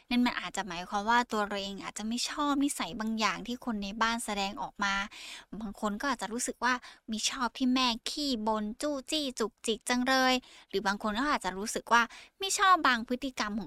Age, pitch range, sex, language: 20-39, 210-265 Hz, female, Thai